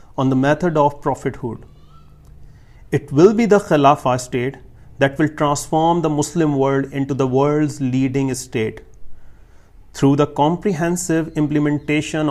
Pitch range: 130-155 Hz